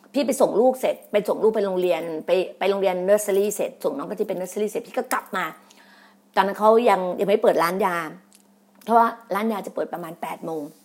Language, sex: Thai, female